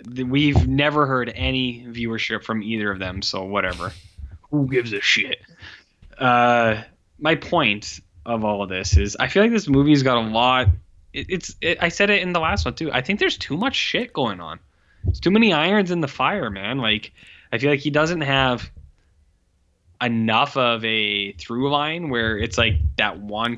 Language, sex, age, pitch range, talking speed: English, male, 10-29, 100-155 Hz, 190 wpm